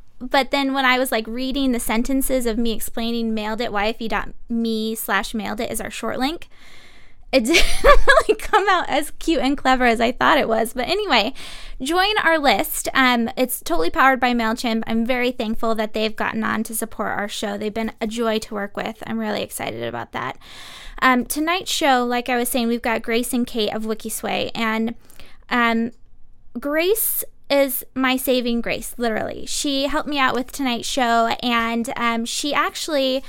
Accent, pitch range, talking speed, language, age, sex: American, 230-275 Hz, 185 wpm, English, 20-39, female